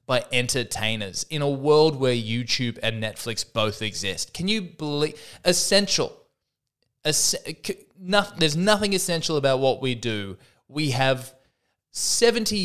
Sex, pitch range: male, 115-155 Hz